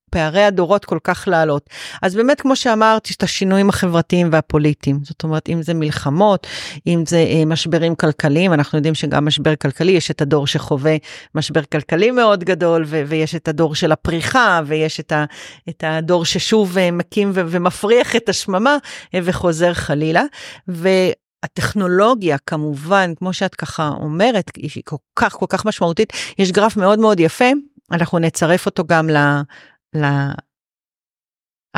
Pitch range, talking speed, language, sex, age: 160-205 Hz, 145 wpm, Hebrew, female, 40-59